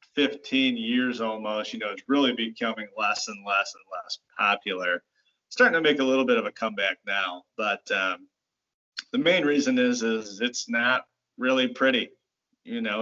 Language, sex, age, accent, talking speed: English, male, 30-49, American, 175 wpm